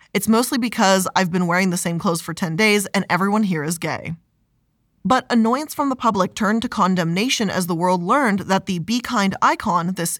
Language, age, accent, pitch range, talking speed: English, 20-39, American, 175-225 Hz, 205 wpm